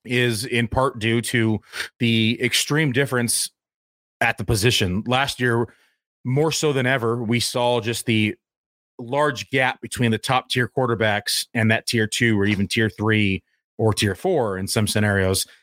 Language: English